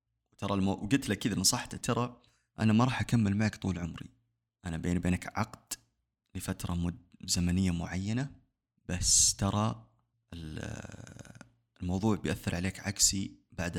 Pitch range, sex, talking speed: 90-115 Hz, male, 115 wpm